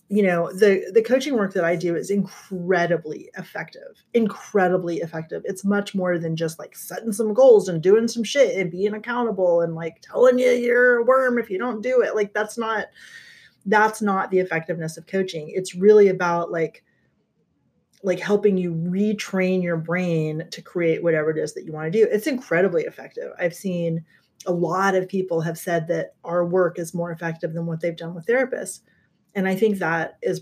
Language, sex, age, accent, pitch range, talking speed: English, female, 30-49, American, 175-230 Hz, 195 wpm